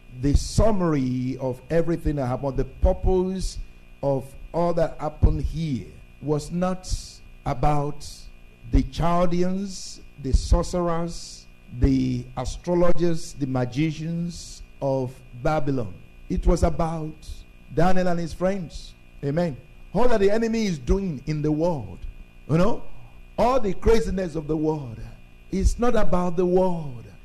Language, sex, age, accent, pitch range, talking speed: English, male, 50-69, Nigerian, 110-170 Hz, 120 wpm